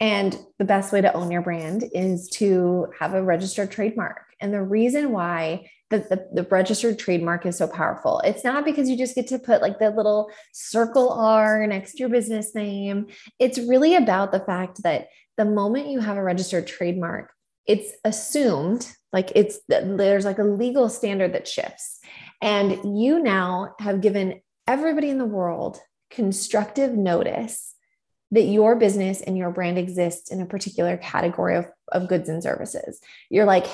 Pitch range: 185-230 Hz